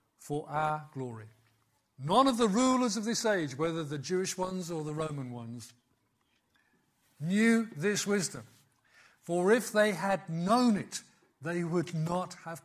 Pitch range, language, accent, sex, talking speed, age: 140-190 Hz, English, British, male, 145 wpm, 50-69